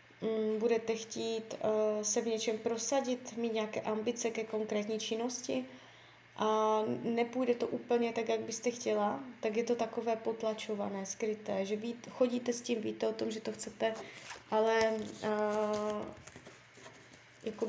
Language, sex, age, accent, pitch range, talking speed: Czech, female, 20-39, native, 215-245 Hz, 140 wpm